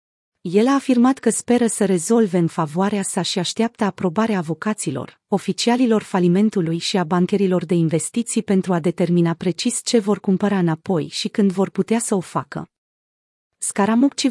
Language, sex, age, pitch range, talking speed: Romanian, female, 30-49, 180-220 Hz, 155 wpm